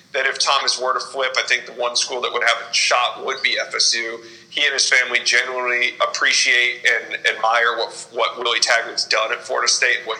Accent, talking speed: American, 220 wpm